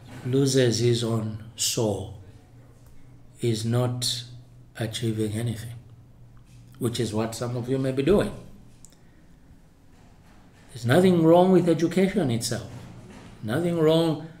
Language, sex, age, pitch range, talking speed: English, male, 60-79, 115-150 Hz, 105 wpm